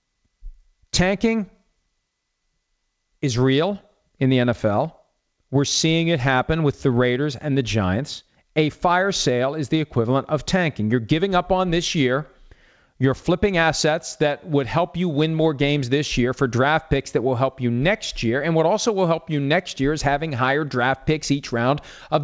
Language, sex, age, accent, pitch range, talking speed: English, male, 40-59, American, 125-165 Hz, 180 wpm